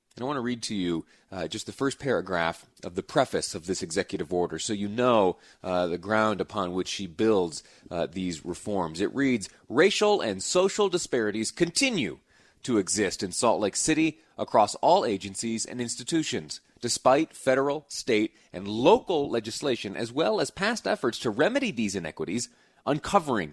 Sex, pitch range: male, 95-130 Hz